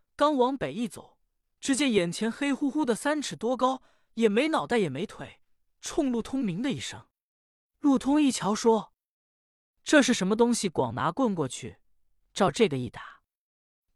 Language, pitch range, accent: Chinese, 145-225 Hz, native